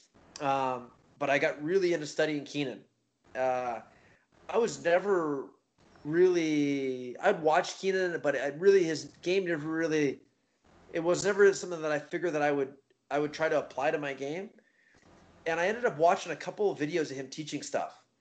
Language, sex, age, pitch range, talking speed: English, male, 20-39, 140-170 Hz, 180 wpm